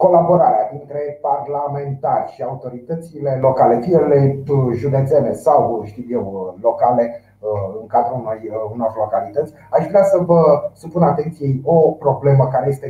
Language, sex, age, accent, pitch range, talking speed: Romanian, male, 30-49, native, 120-160 Hz, 120 wpm